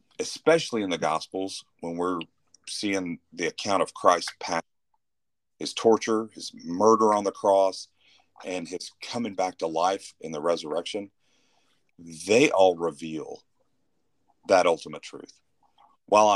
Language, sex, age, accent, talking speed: English, male, 40-59, American, 130 wpm